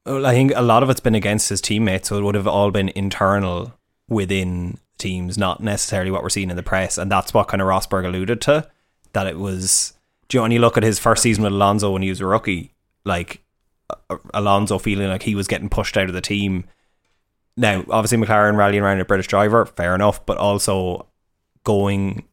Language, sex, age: English, male, 20-39